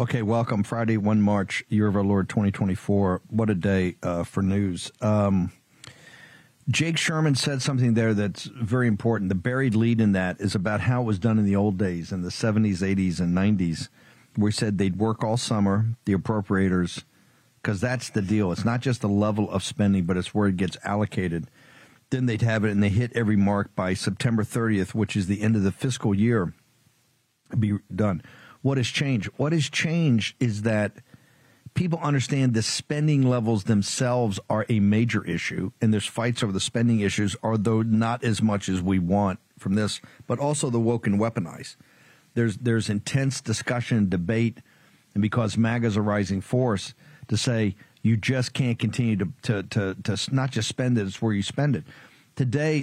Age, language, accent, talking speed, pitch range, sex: 50-69, English, American, 185 wpm, 100-125 Hz, male